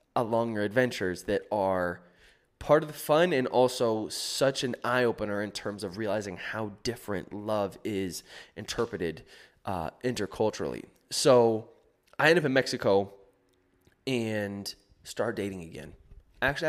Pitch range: 105-130 Hz